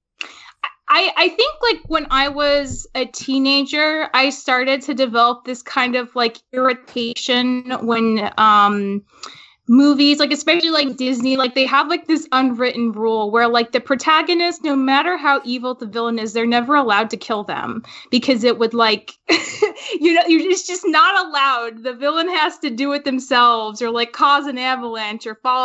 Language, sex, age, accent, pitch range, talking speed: English, female, 10-29, American, 235-295 Hz, 175 wpm